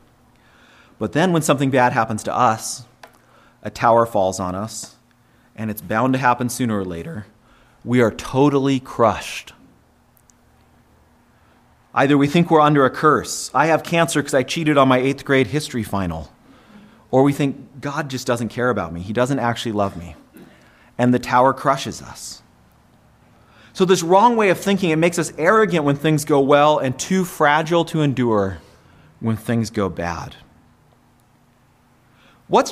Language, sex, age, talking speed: English, male, 30-49, 160 wpm